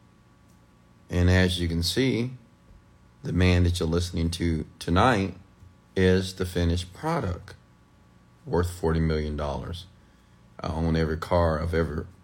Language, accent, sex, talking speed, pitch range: English, American, male, 125 wpm, 80-90 Hz